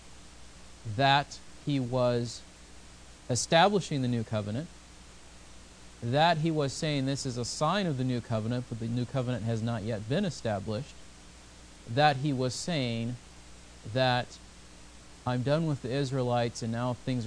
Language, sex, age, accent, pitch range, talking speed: English, male, 40-59, American, 105-135 Hz, 145 wpm